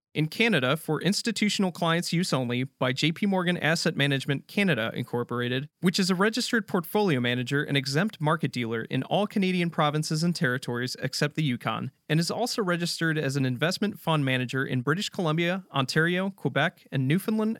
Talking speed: 165 wpm